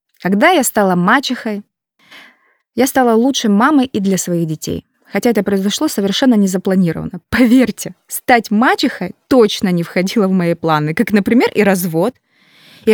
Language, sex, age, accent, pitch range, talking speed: Russian, female, 20-39, native, 195-255 Hz, 145 wpm